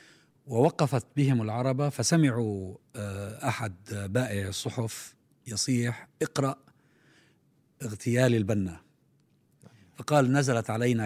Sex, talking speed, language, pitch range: male, 75 wpm, Arabic, 115-145 Hz